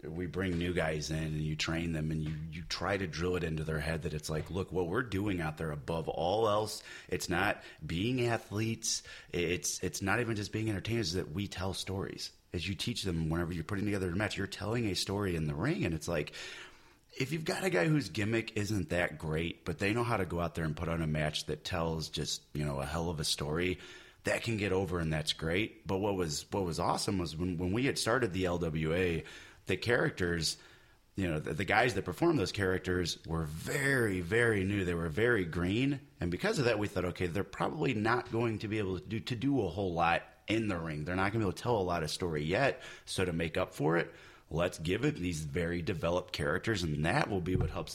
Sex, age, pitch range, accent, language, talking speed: male, 30-49, 85-105 Hz, American, English, 245 wpm